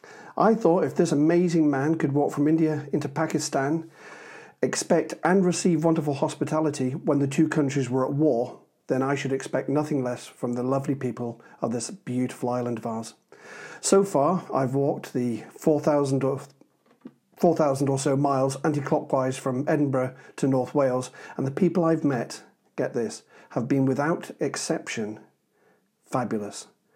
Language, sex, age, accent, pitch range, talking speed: English, male, 40-59, British, 135-160 Hz, 150 wpm